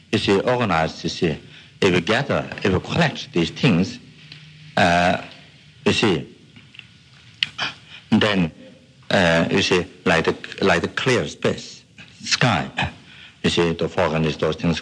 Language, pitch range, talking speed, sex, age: English, 85-125 Hz, 140 wpm, male, 60-79